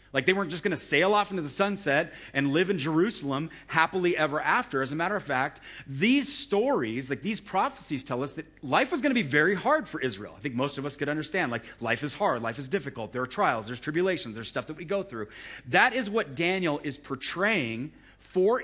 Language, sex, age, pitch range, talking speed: English, male, 40-59, 130-195 Hz, 225 wpm